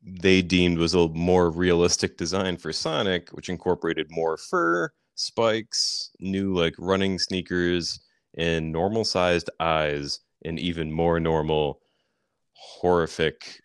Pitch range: 80-95 Hz